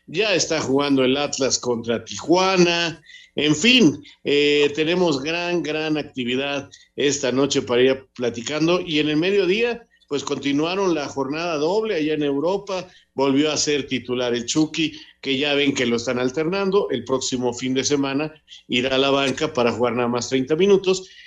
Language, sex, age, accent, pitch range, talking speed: Spanish, male, 50-69, Mexican, 125-155 Hz, 165 wpm